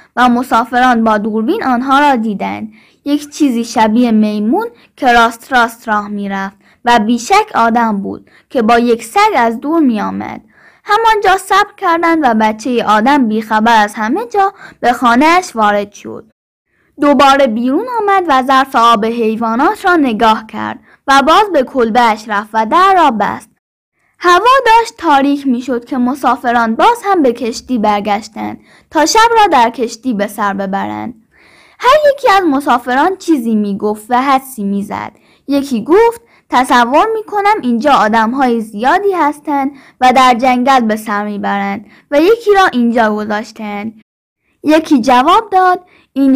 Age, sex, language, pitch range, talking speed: 10-29, female, Persian, 225-335 Hz, 150 wpm